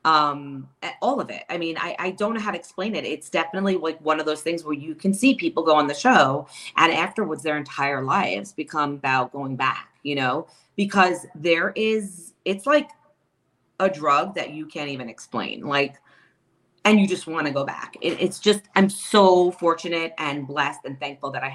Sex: female